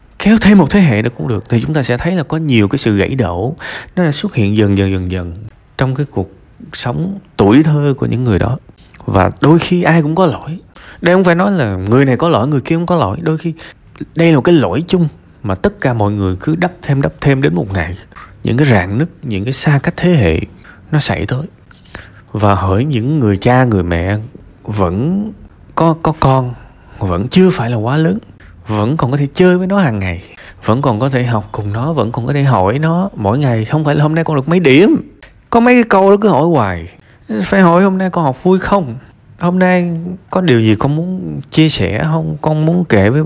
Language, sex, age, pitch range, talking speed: Vietnamese, male, 20-39, 110-175 Hz, 240 wpm